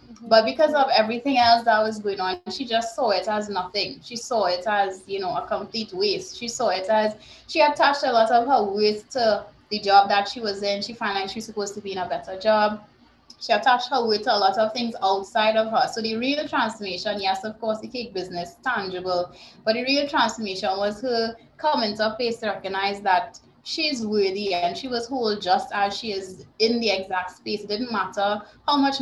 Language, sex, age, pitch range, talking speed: English, female, 20-39, 195-235 Hz, 225 wpm